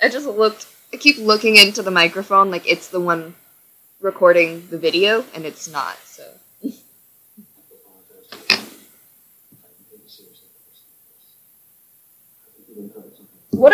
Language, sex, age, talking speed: English, female, 20-39, 90 wpm